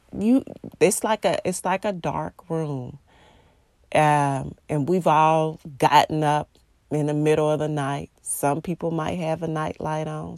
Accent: American